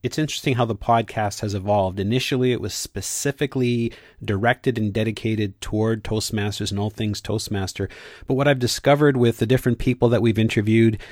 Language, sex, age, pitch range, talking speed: English, male, 40-59, 105-130 Hz, 165 wpm